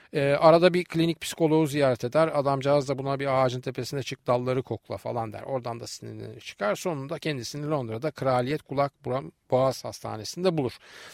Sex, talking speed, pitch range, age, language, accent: male, 160 wpm, 130-170 Hz, 40-59, Turkish, native